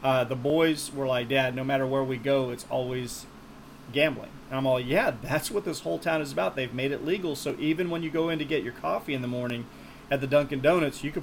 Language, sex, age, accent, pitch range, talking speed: English, male, 30-49, American, 125-145 Hz, 255 wpm